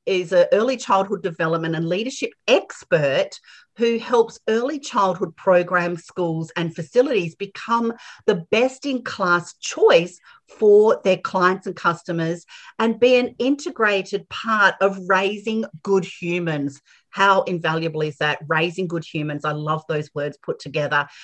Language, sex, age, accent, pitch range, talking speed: English, female, 40-59, Australian, 160-225 Hz, 135 wpm